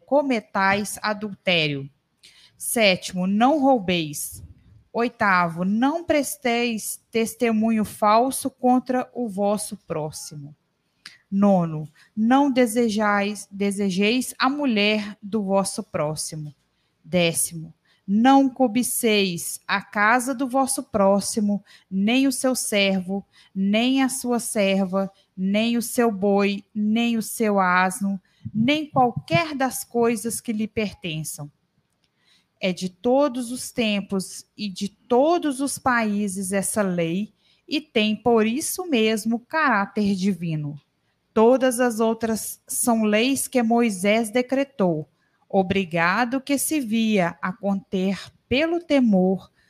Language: Portuguese